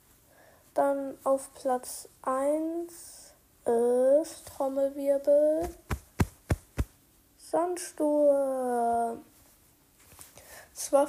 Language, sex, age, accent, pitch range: German, female, 10-29, German, 255-290 Hz